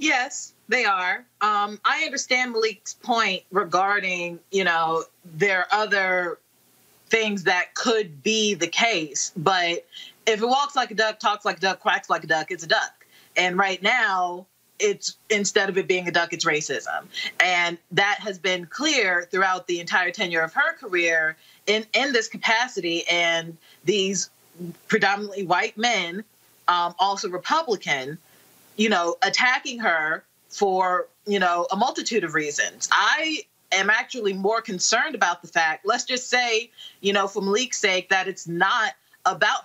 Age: 20-39